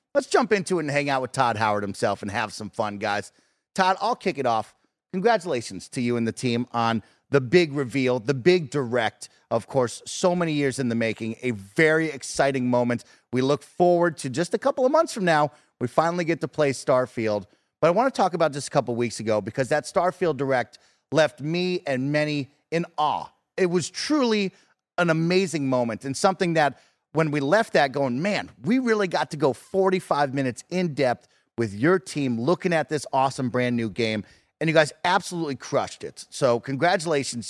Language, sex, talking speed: English, male, 200 wpm